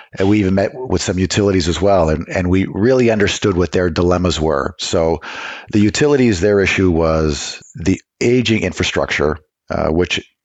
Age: 50-69